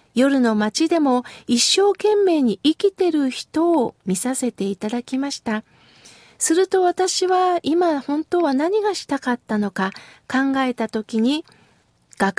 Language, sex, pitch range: Japanese, female, 225-305 Hz